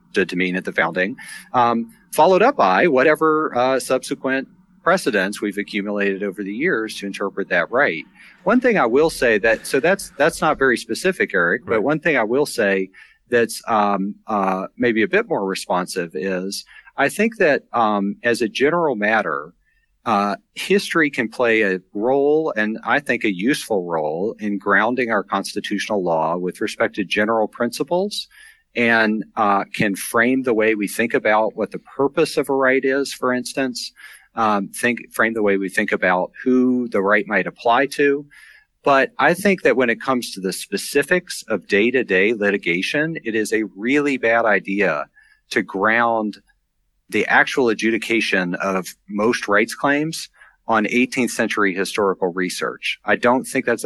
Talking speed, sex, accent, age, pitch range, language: 165 wpm, male, American, 40-59, 100-140 Hz, English